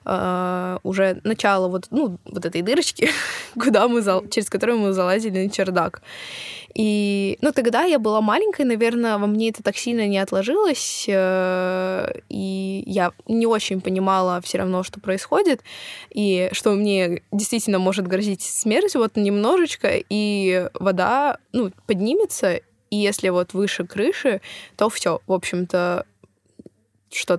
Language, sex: Russian, female